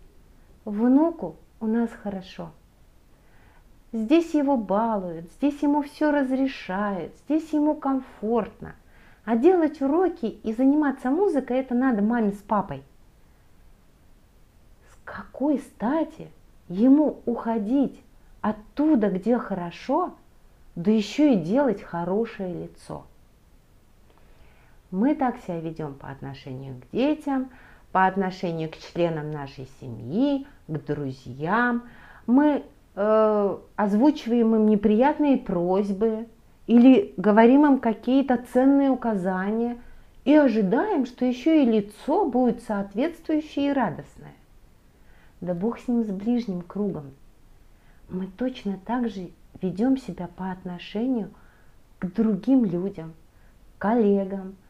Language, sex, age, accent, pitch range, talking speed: Russian, female, 40-59, native, 185-260 Hz, 105 wpm